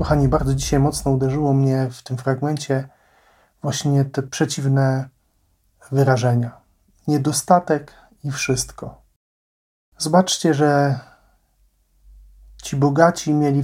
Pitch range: 125-145 Hz